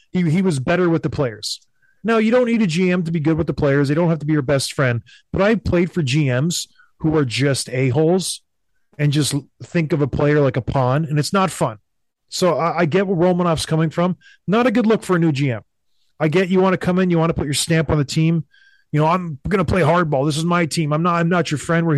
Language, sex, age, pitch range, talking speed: English, male, 30-49, 145-185 Hz, 275 wpm